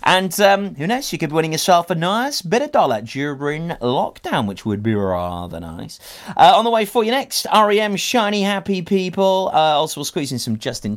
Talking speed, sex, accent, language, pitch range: 210 wpm, male, British, English, 110-180 Hz